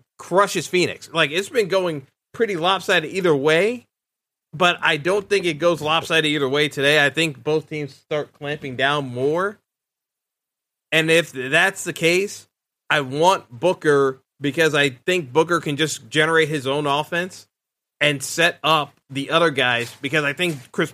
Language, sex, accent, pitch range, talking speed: English, male, American, 140-175 Hz, 160 wpm